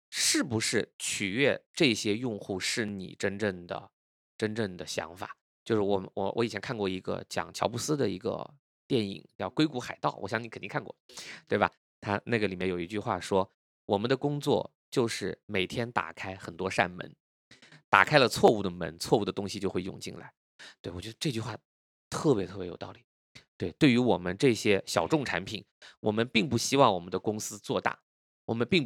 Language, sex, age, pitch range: Chinese, male, 20-39, 100-140 Hz